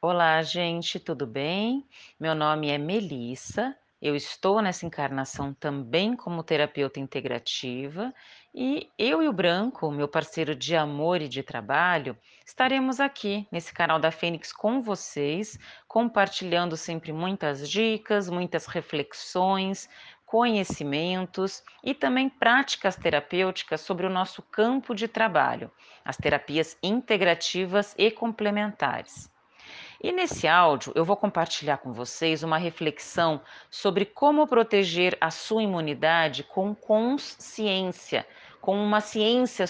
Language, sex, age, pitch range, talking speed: Portuguese, female, 40-59, 160-225 Hz, 120 wpm